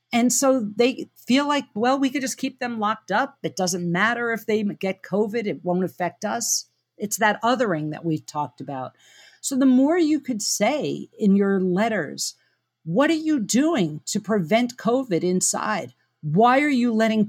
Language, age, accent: English, 50-69, American